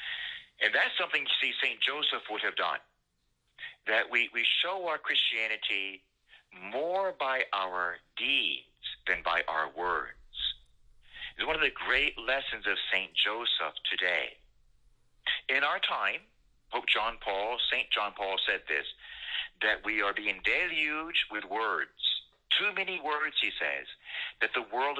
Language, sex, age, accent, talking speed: English, male, 50-69, American, 145 wpm